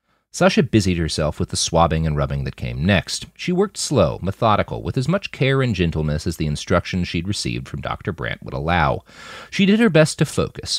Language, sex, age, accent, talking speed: English, male, 40-59, American, 205 wpm